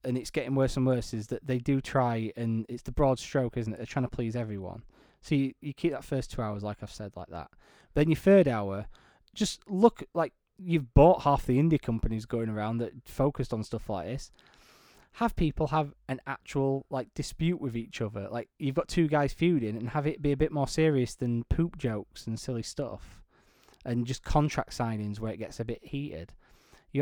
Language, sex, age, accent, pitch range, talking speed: English, male, 20-39, British, 110-140 Hz, 220 wpm